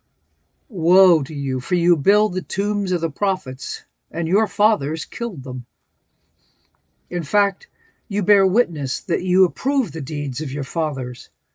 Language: English